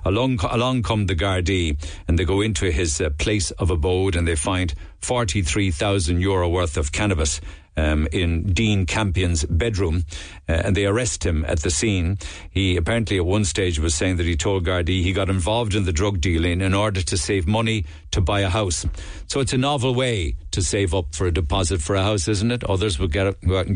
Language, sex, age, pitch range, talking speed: English, male, 60-79, 85-110 Hz, 210 wpm